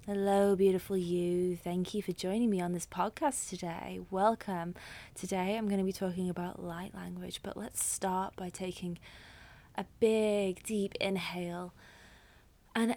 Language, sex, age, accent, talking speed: English, female, 20-39, British, 150 wpm